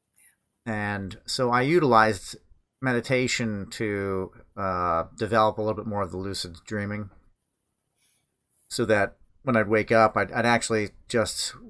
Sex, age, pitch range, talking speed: male, 40-59, 95-115 Hz, 135 wpm